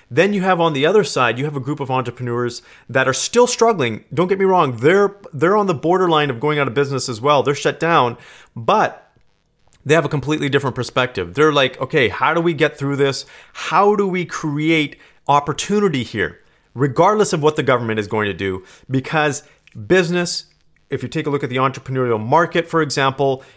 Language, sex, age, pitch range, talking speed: English, male, 40-59, 120-165 Hz, 205 wpm